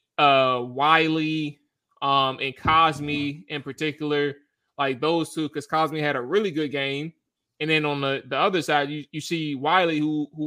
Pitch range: 140-165 Hz